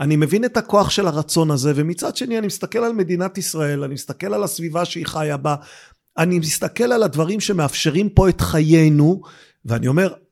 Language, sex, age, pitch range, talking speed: Hebrew, male, 50-69, 165-205 Hz, 180 wpm